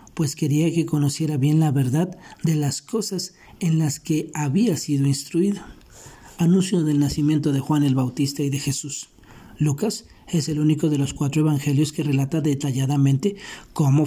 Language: Spanish